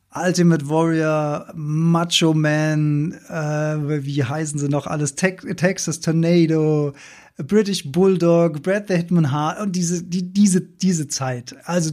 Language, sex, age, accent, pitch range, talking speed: German, male, 20-39, German, 150-185 Hz, 130 wpm